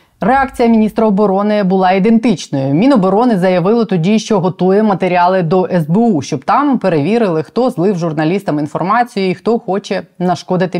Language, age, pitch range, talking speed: Ukrainian, 20-39, 175-225 Hz, 135 wpm